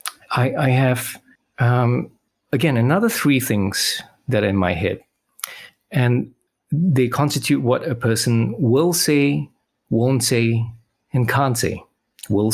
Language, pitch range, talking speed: English, 105-130 Hz, 125 wpm